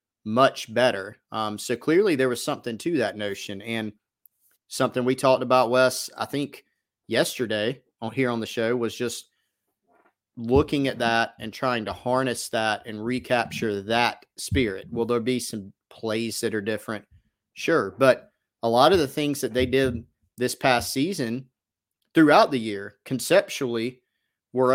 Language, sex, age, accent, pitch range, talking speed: English, male, 30-49, American, 110-125 Hz, 160 wpm